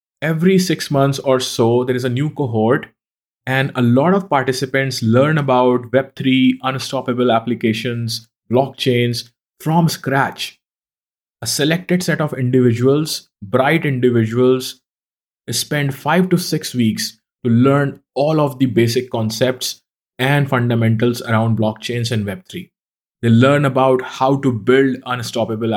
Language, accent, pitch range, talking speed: English, Indian, 115-145 Hz, 130 wpm